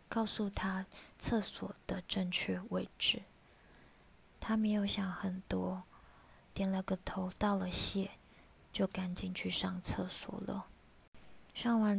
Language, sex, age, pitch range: Chinese, female, 20-39, 185-200 Hz